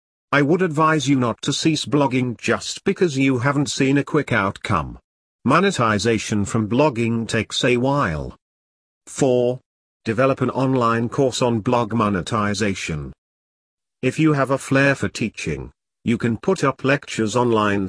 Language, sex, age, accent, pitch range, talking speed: English, male, 50-69, British, 105-140 Hz, 145 wpm